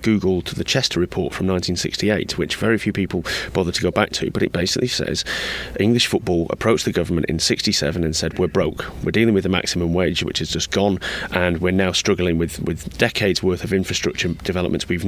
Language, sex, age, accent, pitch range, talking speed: English, male, 30-49, British, 90-100 Hz, 205 wpm